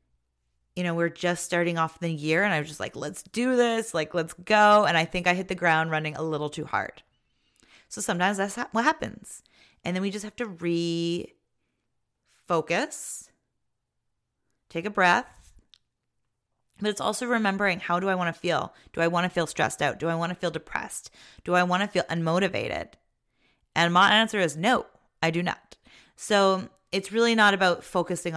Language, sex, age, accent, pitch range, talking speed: English, female, 30-49, American, 155-185 Hz, 190 wpm